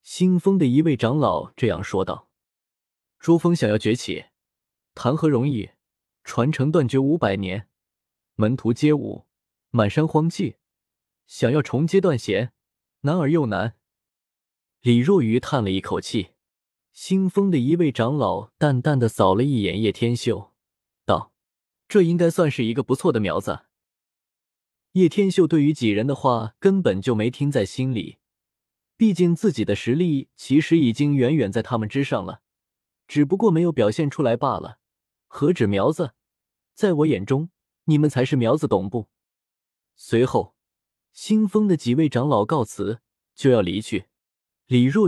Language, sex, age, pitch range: Chinese, male, 20-39, 115-160 Hz